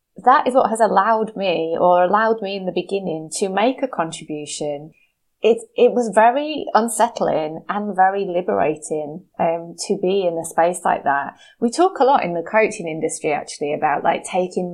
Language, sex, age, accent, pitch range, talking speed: English, female, 20-39, British, 175-225 Hz, 180 wpm